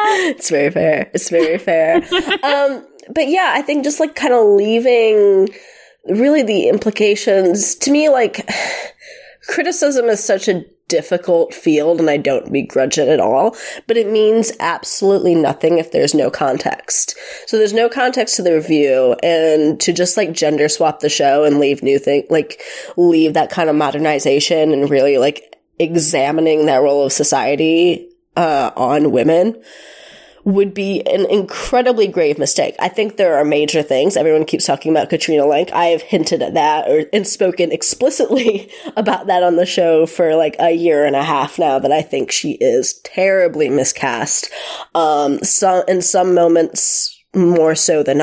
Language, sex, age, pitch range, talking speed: English, female, 20-39, 155-225 Hz, 170 wpm